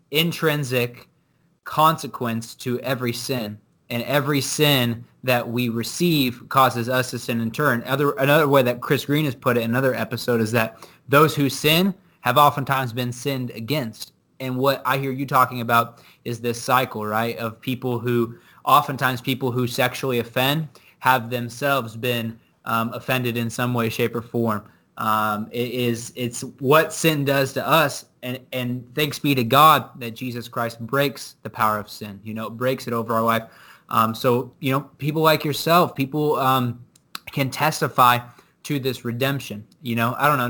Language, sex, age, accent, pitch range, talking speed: English, male, 20-39, American, 115-140 Hz, 175 wpm